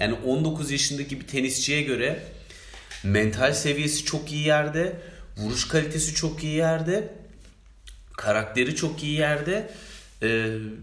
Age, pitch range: 30-49, 115-150 Hz